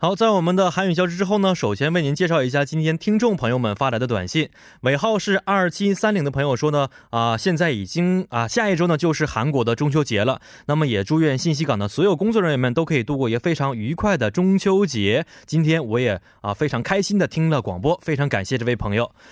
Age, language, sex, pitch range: 20-39, Korean, male, 120-175 Hz